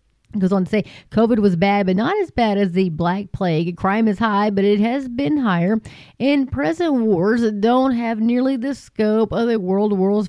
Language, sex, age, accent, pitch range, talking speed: English, female, 30-49, American, 185-220 Hz, 205 wpm